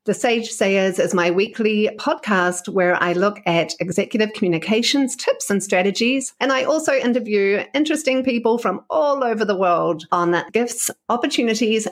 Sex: female